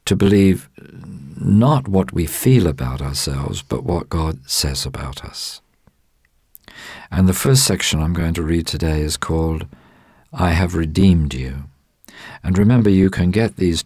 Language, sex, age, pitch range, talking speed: English, male, 50-69, 70-90 Hz, 150 wpm